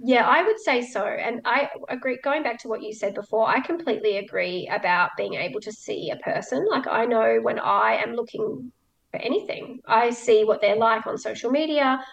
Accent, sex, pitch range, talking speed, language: Australian, female, 210-255 Hz, 210 wpm, English